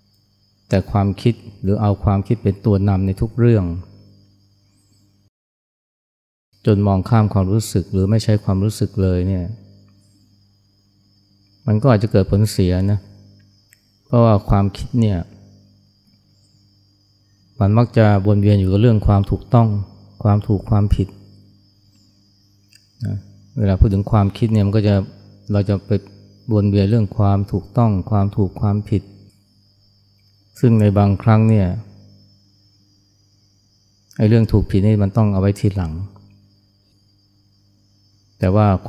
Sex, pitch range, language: male, 100-105 Hz, Thai